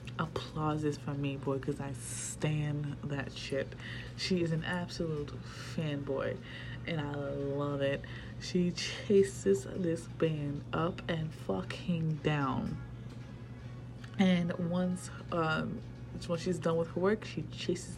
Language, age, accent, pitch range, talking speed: English, 20-39, American, 125-165 Hz, 125 wpm